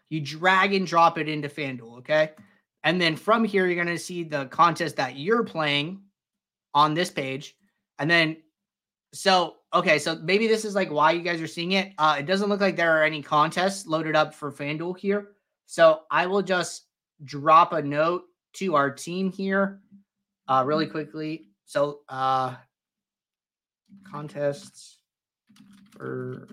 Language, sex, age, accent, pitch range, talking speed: English, male, 30-49, American, 155-200 Hz, 160 wpm